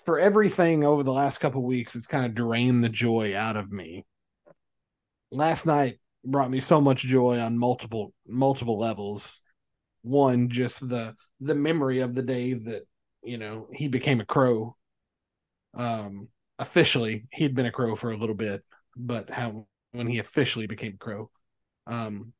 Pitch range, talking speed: 115-135 Hz, 170 wpm